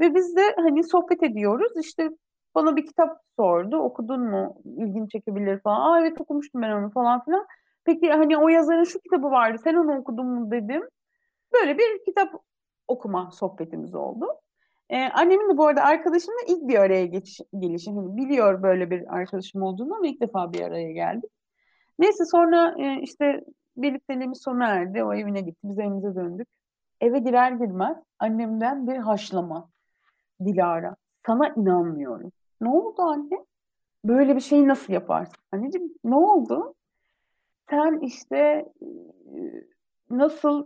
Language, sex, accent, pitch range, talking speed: Turkish, female, native, 210-320 Hz, 145 wpm